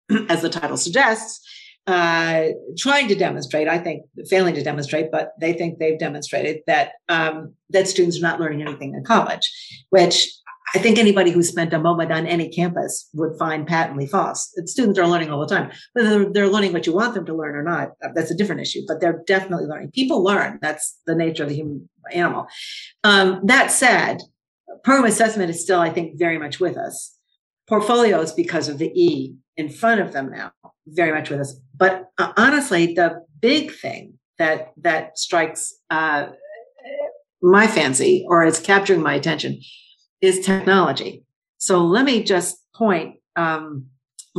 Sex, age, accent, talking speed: female, 50-69, American, 175 wpm